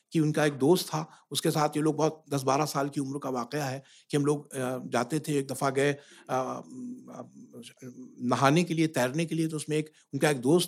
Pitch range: 145-175 Hz